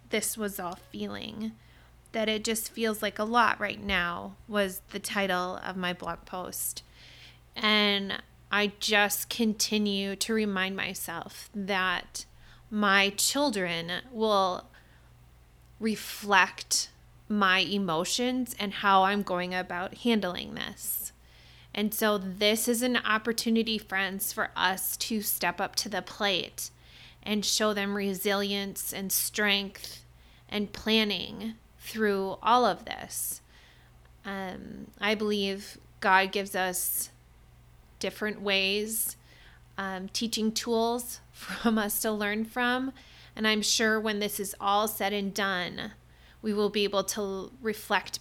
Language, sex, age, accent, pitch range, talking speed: English, female, 20-39, American, 185-220 Hz, 125 wpm